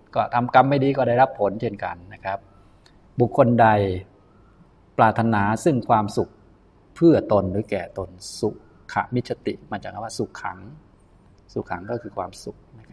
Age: 20-39